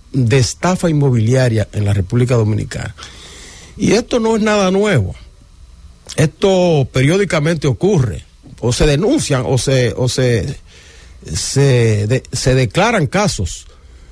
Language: English